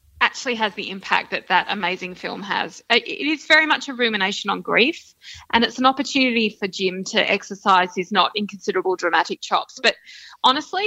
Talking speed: 175 wpm